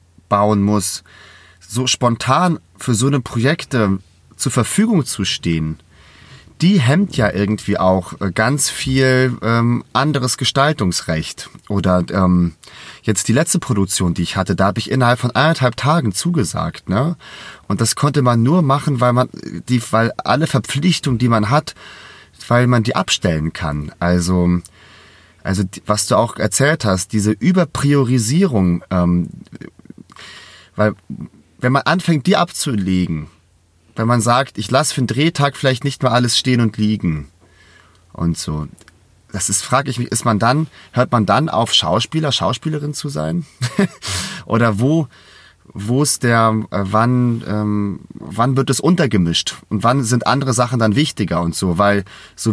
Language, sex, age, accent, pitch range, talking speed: German, male, 30-49, German, 95-135 Hz, 150 wpm